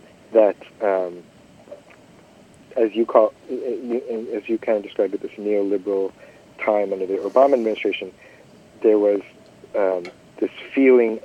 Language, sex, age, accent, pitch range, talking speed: English, male, 50-69, American, 95-115 Hz, 125 wpm